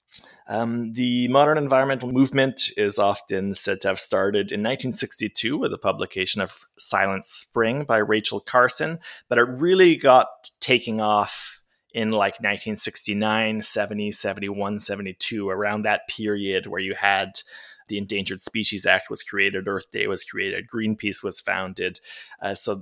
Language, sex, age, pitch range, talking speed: English, male, 20-39, 100-115 Hz, 145 wpm